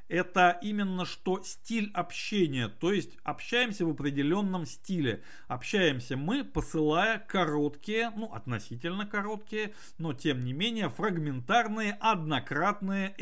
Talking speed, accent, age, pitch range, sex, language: 110 wpm, native, 50-69, 140-205 Hz, male, Russian